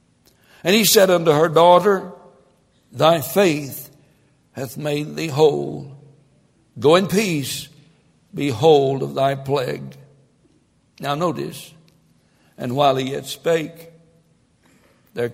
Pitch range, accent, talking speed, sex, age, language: 135-160 Hz, American, 105 wpm, male, 60-79, English